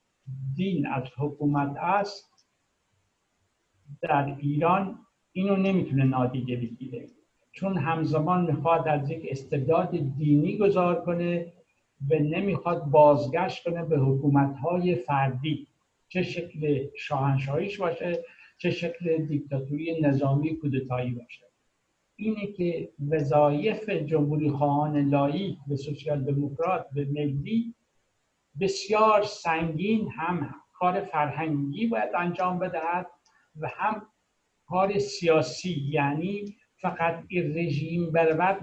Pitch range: 145-180 Hz